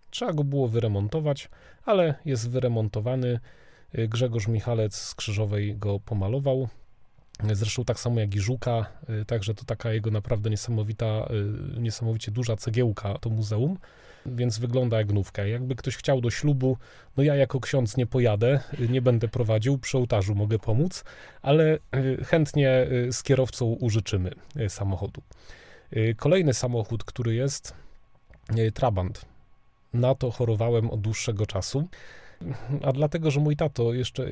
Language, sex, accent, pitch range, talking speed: Polish, male, native, 110-135 Hz, 130 wpm